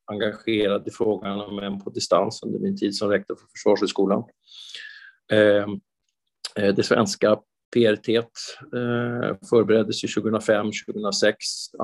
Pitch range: 100-115 Hz